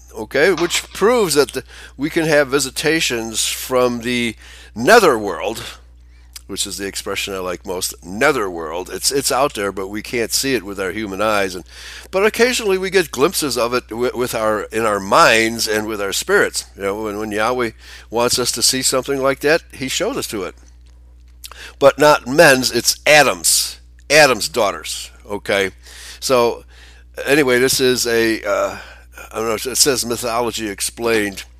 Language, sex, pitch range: English, male, 95-140 Hz